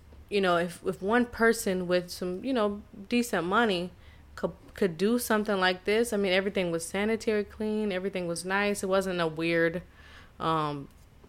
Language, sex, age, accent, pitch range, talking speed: English, female, 20-39, American, 160-195 Hz, 170 wpm